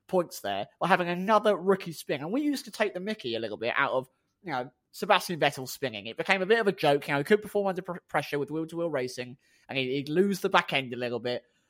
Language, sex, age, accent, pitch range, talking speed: English, male, 20-39, British, 150-220 Hz, 255 wpm